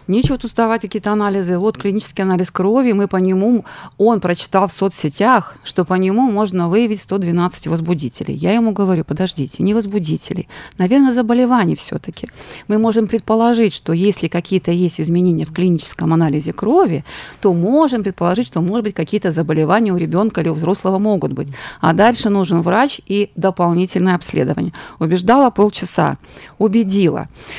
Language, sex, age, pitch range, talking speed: Russian, female, 30-49, 175-210 Hz, 150 wpm